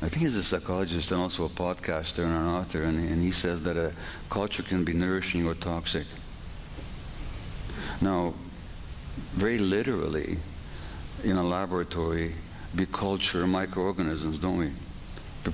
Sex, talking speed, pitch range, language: male, 140 wpm, 80-95 Hz, English